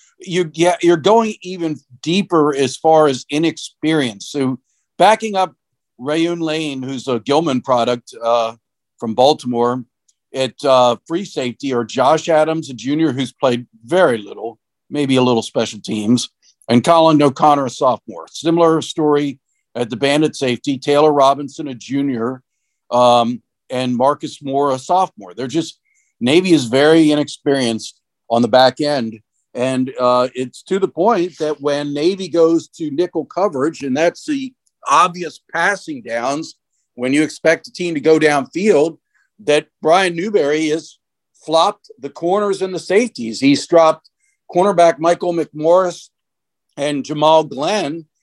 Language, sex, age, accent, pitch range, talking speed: English, male, 50-69, American, 130-170 Hz, 145 wpm